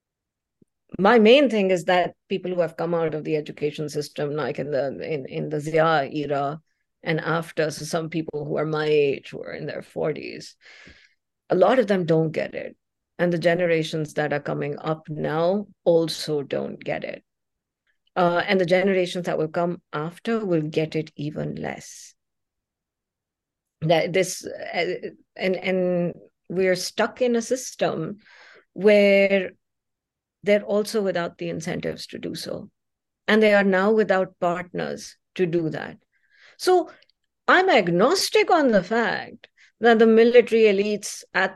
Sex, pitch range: female, 160-200 Hz